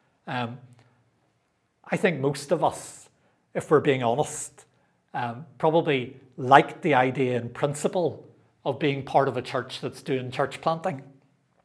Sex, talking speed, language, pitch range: male, 140 wpm, English, 125-155 Hz